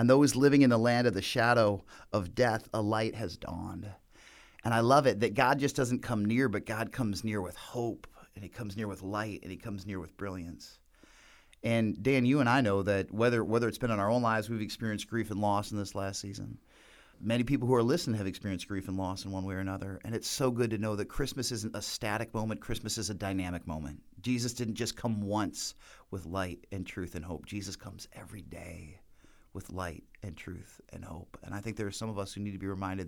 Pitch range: 95-110 Hz